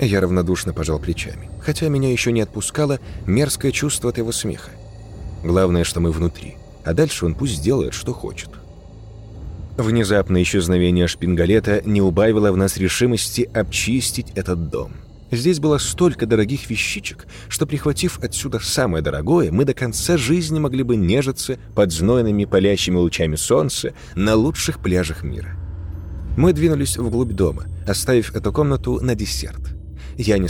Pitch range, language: 85-130 Hz, Russian